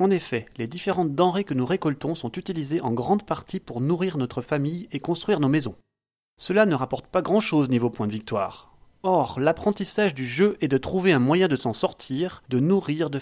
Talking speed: 210 wpm